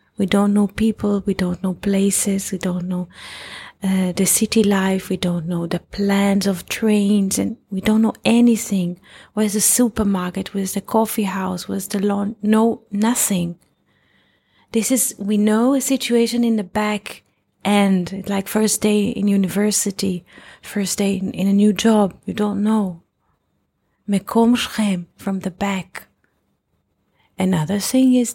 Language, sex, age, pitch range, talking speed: English, female, 30-49, 190-215 Hz, 150 wpm